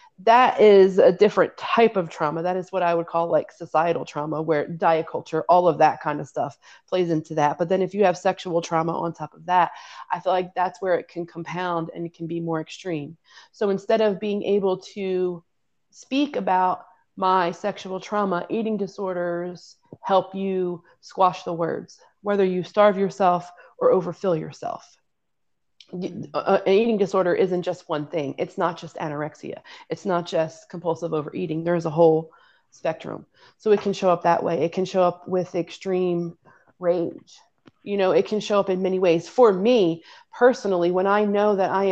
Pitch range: 170-195 Hz